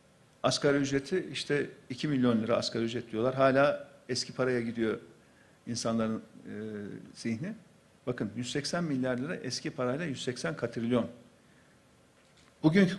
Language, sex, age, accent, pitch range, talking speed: Turkish, male, 50-69, native, 140-210 Hz, 110 wpm